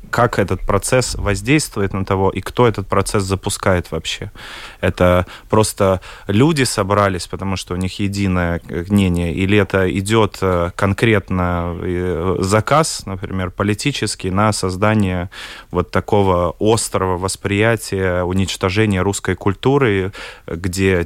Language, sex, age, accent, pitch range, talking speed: Russian, male, 20-39, native, 95-110 Hz, 110 wpm